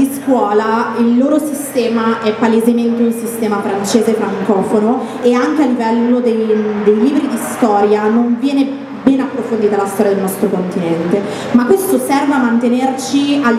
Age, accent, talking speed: 30-49, native, 150 wpm